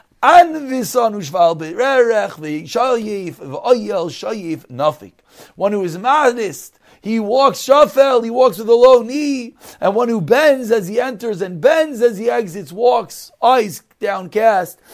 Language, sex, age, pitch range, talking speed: English, male, 40-59, 190-255 Hz, 135 wpm